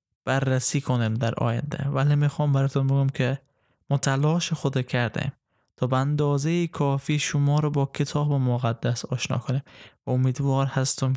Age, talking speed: 20-39, 135 wpm